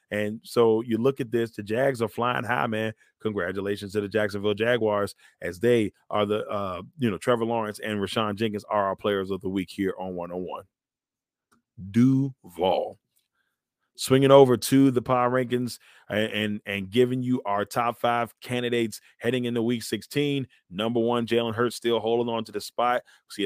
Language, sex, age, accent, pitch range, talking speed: English, male, 30-49, American, 105-125 Hz, 175 wpm